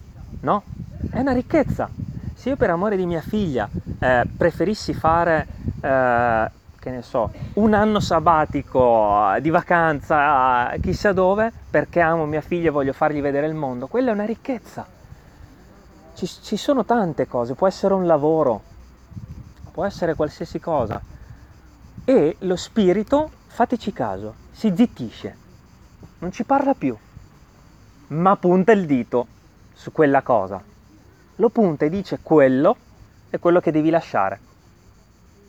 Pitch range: 120-185 Hz